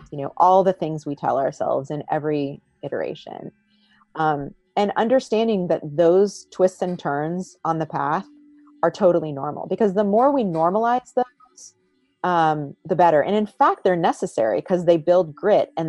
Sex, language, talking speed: female, English, 165 wpm